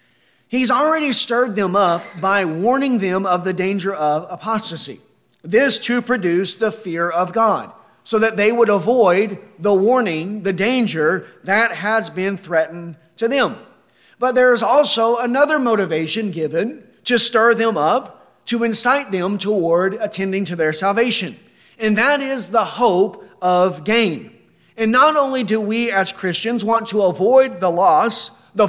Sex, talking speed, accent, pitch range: male, 155 wpm, American, 170-235 Hz